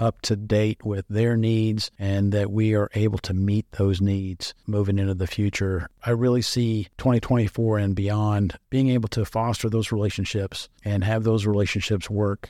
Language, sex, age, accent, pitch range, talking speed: English, male, 50-69, American, 100-110 Hz, 175 wpm